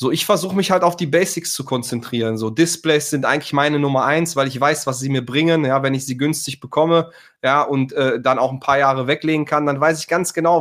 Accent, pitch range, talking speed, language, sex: German, 125-150 Hz, 255 wpm, German, male